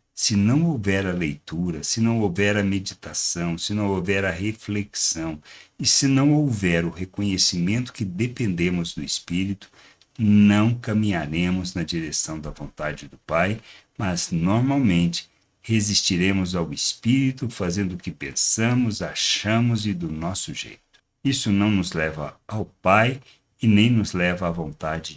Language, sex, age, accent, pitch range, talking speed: Portuguese, male, 60-79, Brazilian, 85-110 Hz, 140 wpm